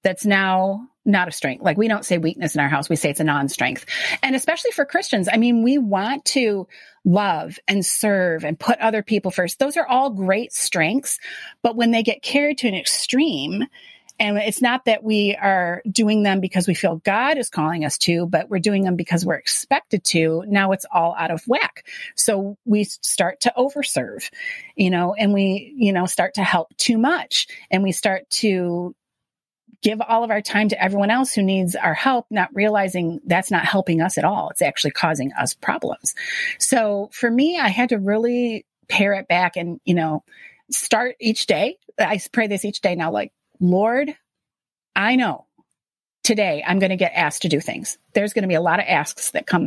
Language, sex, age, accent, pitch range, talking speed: English, female, 30-49, American, 180-240 Hz, 205 wpm